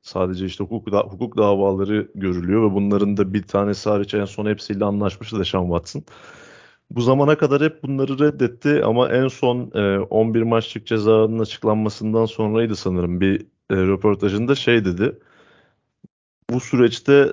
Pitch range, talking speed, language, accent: 100-115 Hz, 150 wpm, Turkish, native